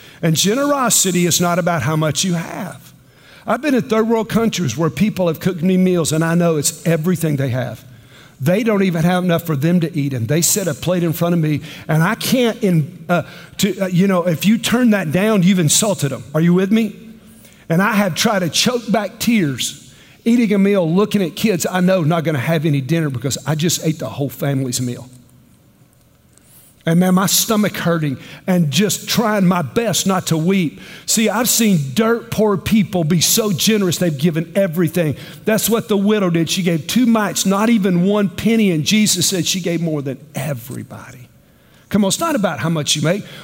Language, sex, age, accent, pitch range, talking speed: English, male, 50-69, American, 160-205 Hz, 210 wpm